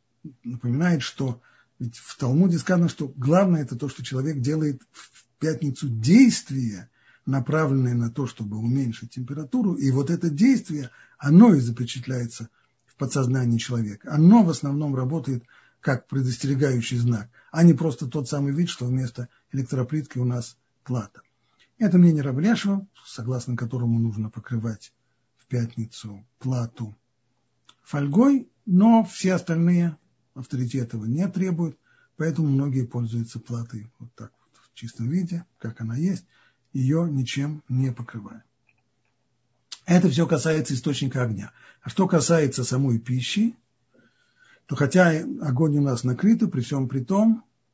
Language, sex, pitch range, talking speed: Russian, male, 125-165 Hz, 135 wpm